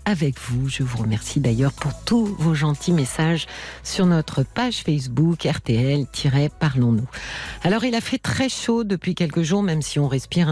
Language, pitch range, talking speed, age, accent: French, 130-175 Hz, 165 wpm, 50-69, French